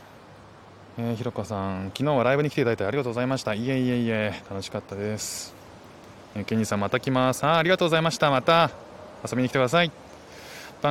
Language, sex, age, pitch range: Japanese, male, 20-39, 105-155 Hz